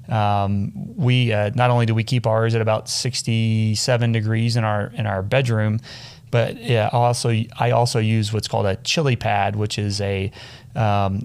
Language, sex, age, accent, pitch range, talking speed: English, male, 30-49, American, 105-125 Hz, 175 wpm